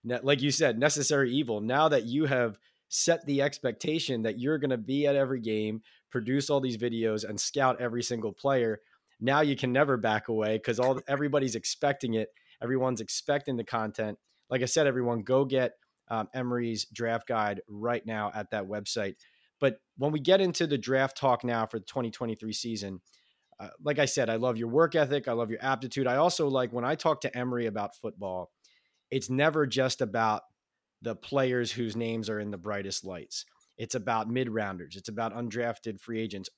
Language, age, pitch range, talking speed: English, 20-39, 115-140 Hz, 190 wpm